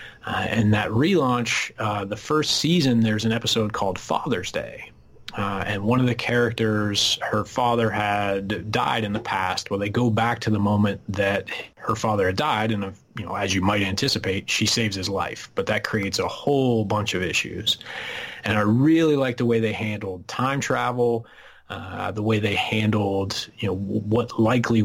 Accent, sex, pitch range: American, male, 100-115 Hz